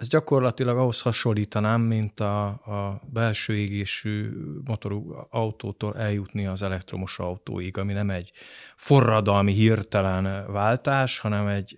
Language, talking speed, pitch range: Hungarian, 115 wpm, 100-120 Hz